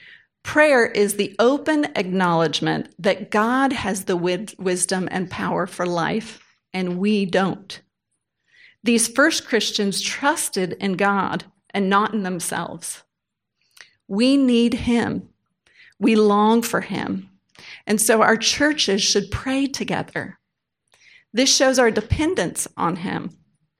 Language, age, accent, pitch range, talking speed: English, 40-59, American, 190-245 Hz, 120 wpm